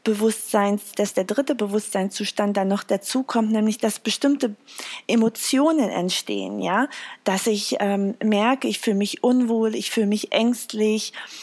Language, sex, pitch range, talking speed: German, female, 195-235 Hz, 140 wpm